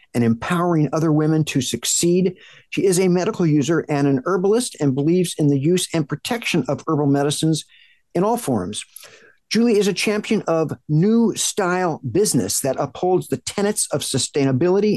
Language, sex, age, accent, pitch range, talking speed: English, male, 50-69, American, 140-180 Hz, 165 wpm